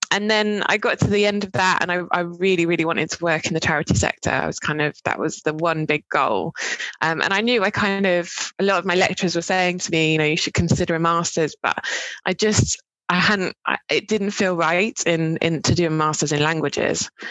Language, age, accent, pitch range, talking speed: English, 20-39, British, 155-185 Hz, 250 wpm